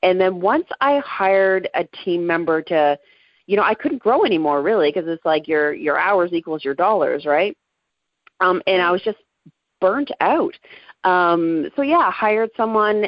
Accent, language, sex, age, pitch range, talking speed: American, English, female, 40-59, 155-220 Hz, 180 wpm